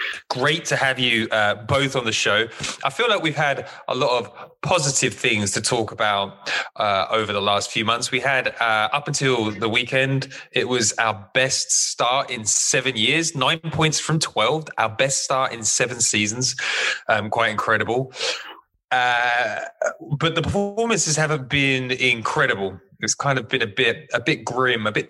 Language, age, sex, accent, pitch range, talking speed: English, 20-39, male, British, 110-140 Hz, 175 wpm